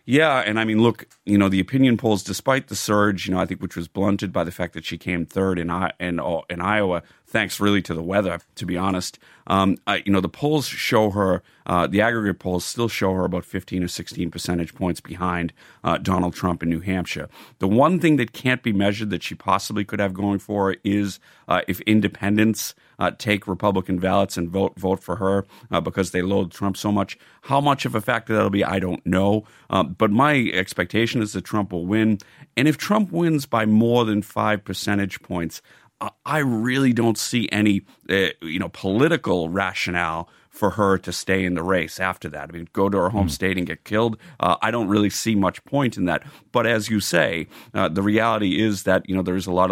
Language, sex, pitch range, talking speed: English, male, 90-110 Hz, 225 wpm